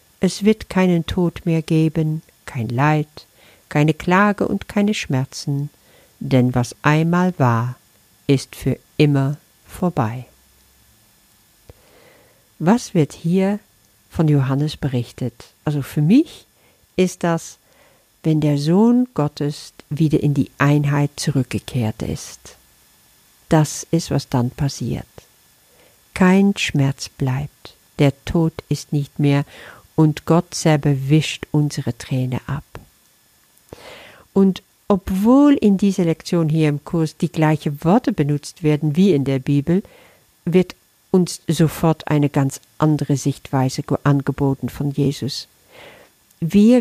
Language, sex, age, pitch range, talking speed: German, female, 50-69, 140-180 Hz, 115 wpm